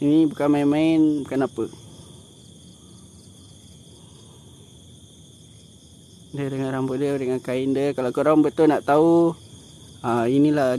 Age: 20-39